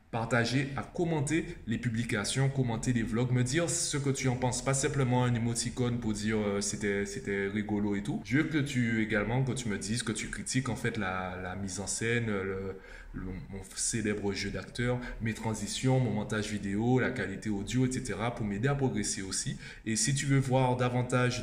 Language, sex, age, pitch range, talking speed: French, male, 20-39, 105-125 Hz, 200 wpm